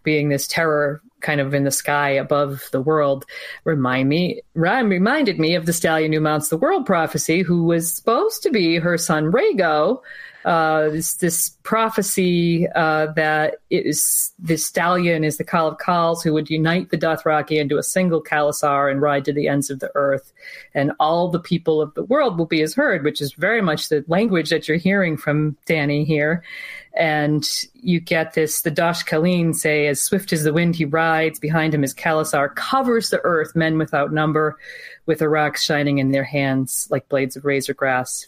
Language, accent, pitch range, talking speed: English, American, 150-175 Hz, 190 wpm